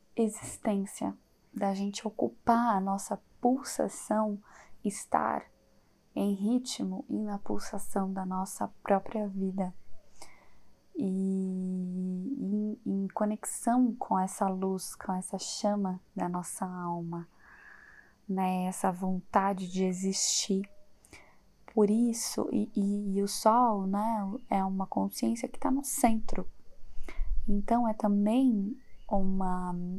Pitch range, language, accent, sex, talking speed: 185-220 Hz, Portuguese, Brazilian, female, 110 wpm